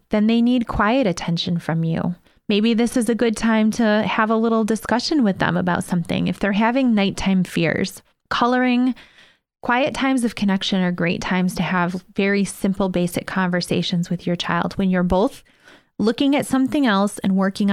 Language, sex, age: English, female, 20-39